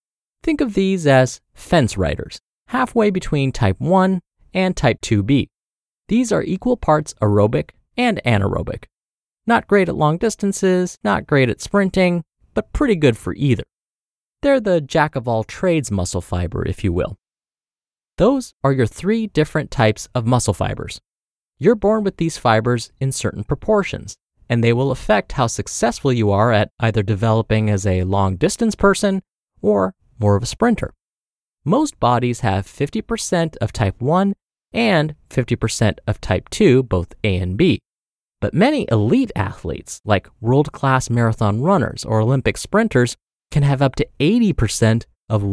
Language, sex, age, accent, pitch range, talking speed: English, male, 30-49, American, 110-185 Hz, 150 wpm